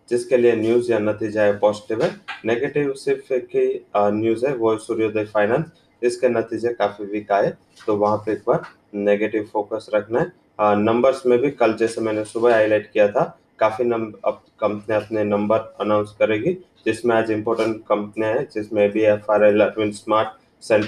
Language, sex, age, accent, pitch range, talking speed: English, male, 20-39, Indian, 105-120 Hz, 140 wpm